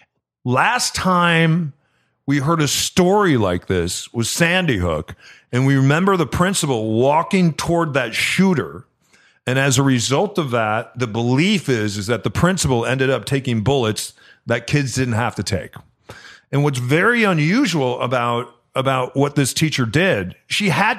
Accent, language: American, English